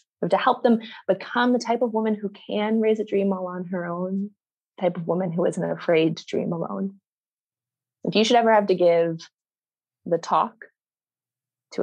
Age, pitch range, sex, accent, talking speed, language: 20-39, 170-210 Hz, female, American, 185 wpm, English